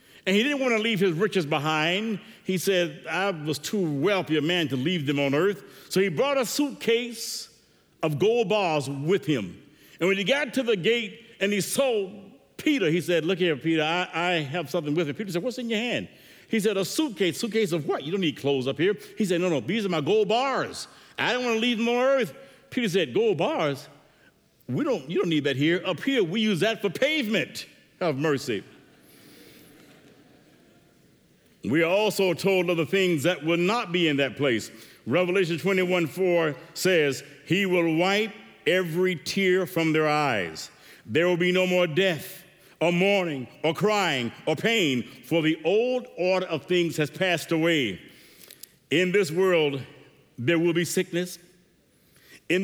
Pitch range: 160-205 Hz